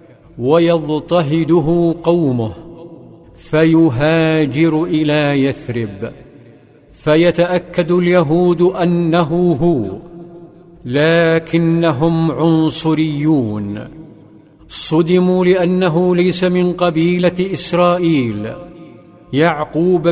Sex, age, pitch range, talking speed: male, 50-69, 155-175 Hz, 55 wpm